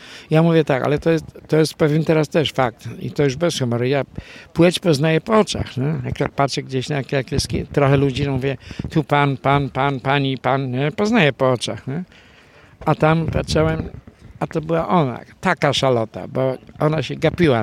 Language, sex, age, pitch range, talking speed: Polish, male, 60-79, 130-165 Hz, 190 wpm